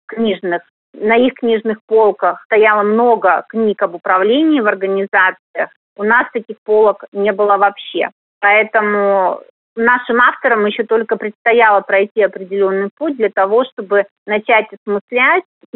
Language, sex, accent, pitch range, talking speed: Russian, female, native, 200-235 Hz, 125 wpm